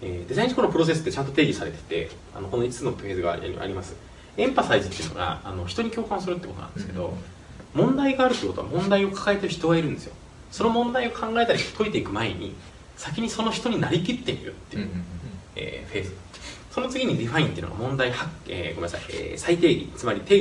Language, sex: Japanese, male